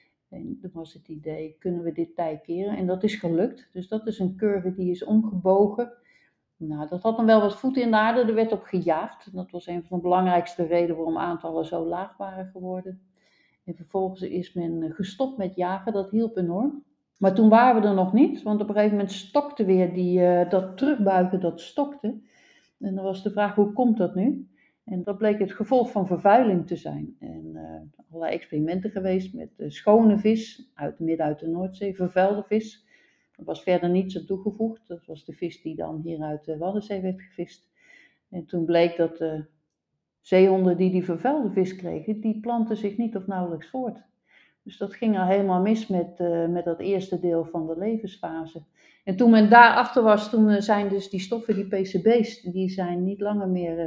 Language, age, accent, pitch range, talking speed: Dutch, 60-79, Dutch, 175-215 Hz, 200 wpm